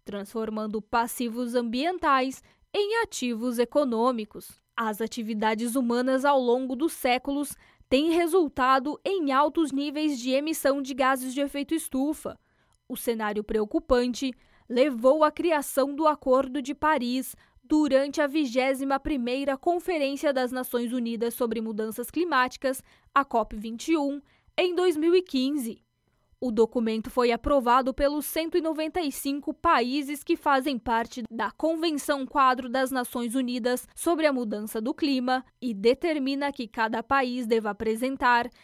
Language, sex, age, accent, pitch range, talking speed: Portuguese, female, 10-29, Brazilian, 240-295 Hz, 120 wpm